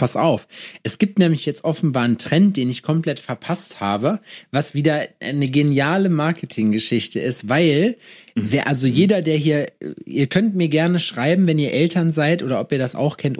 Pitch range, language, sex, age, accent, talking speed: 135-170 Hz, German, male, 30-49, German, 185 wpm